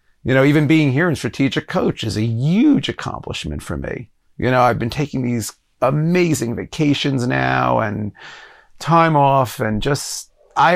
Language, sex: English, male